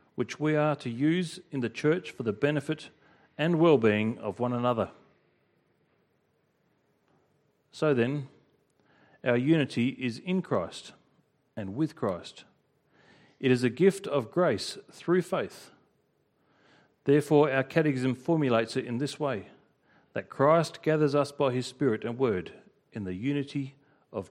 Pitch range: 130-155 Hz